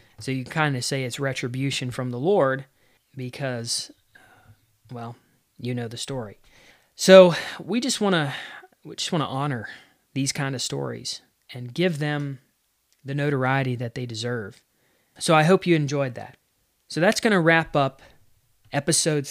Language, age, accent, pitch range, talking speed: English, 30-49, American, 125-150 Hz, 160 wpm